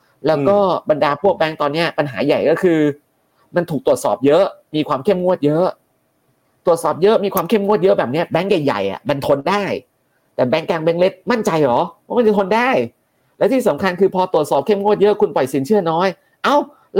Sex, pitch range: male, 150-200 Hz